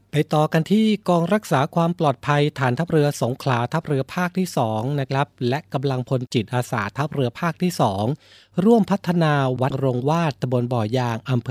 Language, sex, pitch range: Thai, male, 120-150 Hz